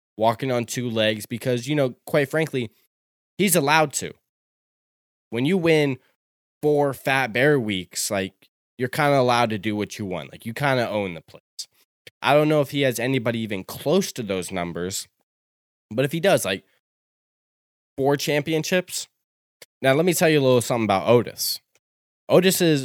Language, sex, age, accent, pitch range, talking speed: English, male, 10-29, American, 110-135 Hz, 175 wpm